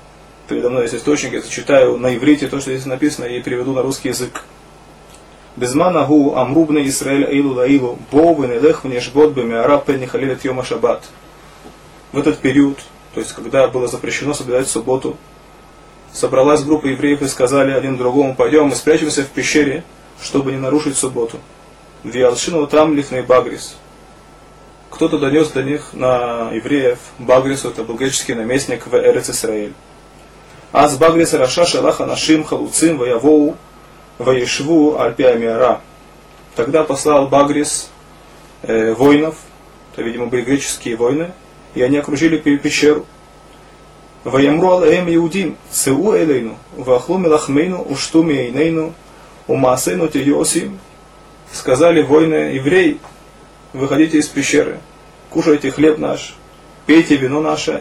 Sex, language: male, Russian